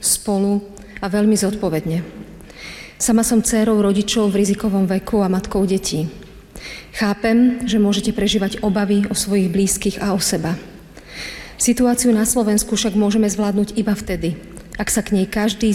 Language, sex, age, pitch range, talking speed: Slovak, female, 40-59, 190-215 Hz, 145 wpm